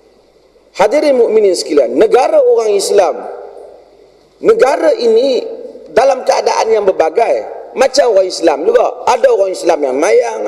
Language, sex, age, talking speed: Malay, male, 40-59, 120 wpm